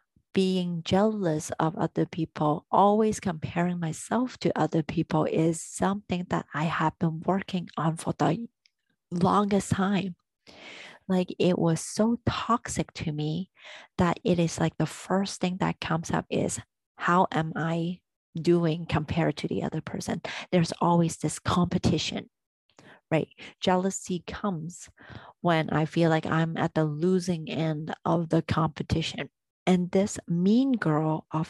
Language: English